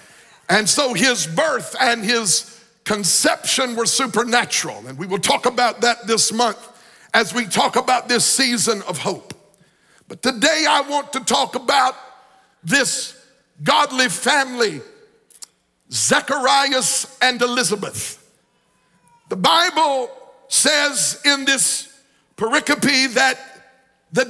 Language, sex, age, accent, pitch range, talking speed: English, male, 60-79, American, 240-285 Hz, 115 wpm